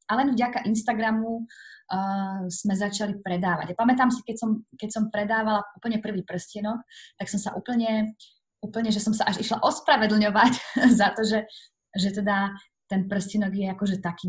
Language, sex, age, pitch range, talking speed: Slovak, female, 20-39, 190-225 Hz, 170 wpm